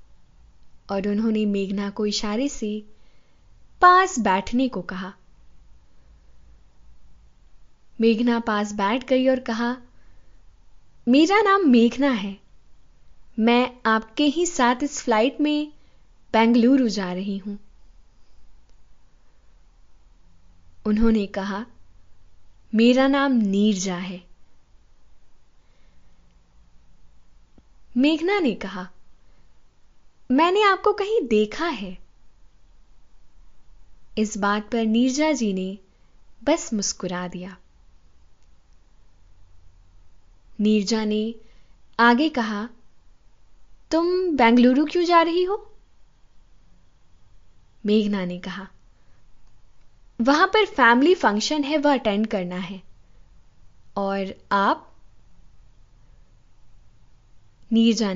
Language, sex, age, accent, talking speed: Hindi, female, 10-29, native, 80 wpm